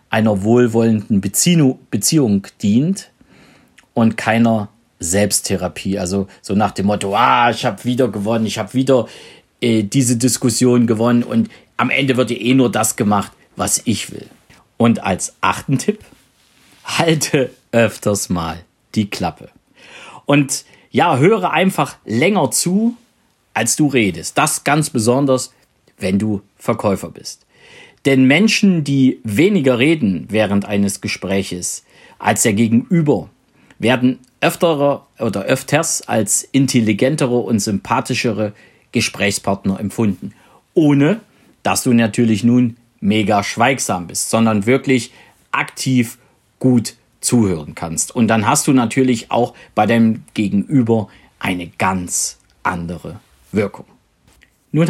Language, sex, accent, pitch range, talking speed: German, male, German, 105-135 Hz, 120 wpm